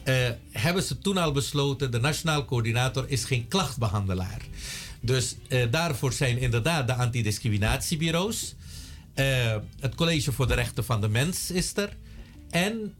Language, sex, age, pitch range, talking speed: Dutch, male, 50-69, 115-155 Hz, 145 wpm